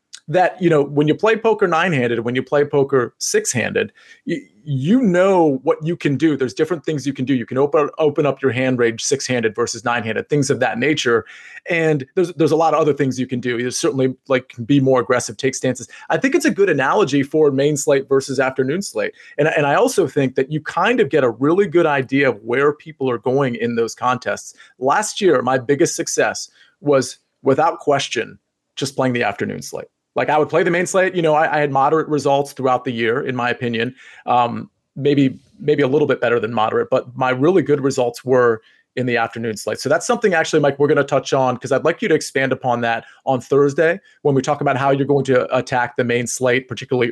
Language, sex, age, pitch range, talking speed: English, male, 30-49, 125-155 Hz, 230 wpm